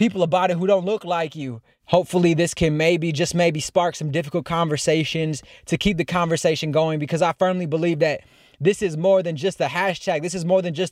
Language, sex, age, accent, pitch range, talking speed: English, male, 20-39, American, 165-195 Hz, 220 wpm